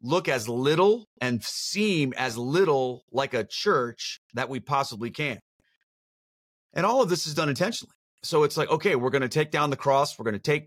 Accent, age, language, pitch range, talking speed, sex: American, 30-49, English, 120-155 Hz, 200 wpm, male